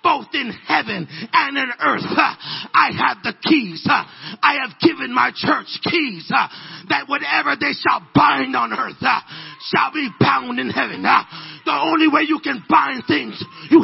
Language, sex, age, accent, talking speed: English, male, 50-69, American, 155 wpm